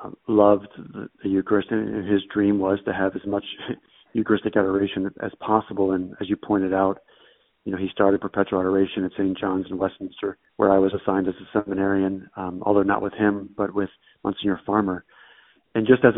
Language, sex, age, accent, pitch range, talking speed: English, male, 40-59, American, 95-110 Hz, 190 wpm